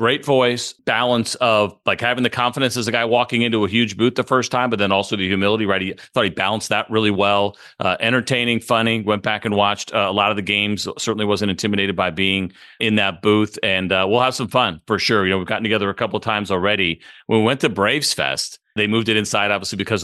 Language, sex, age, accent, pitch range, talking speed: English, male, 40-59, American, 95-120 Hz, 245 wpm